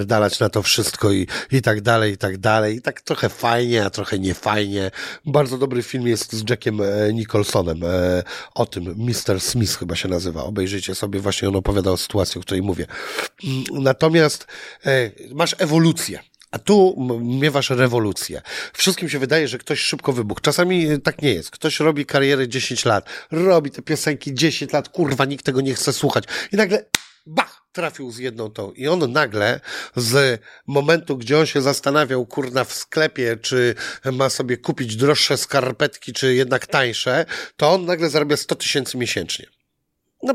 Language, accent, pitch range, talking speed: Polish, native, 110-155 Hz, 165 wpm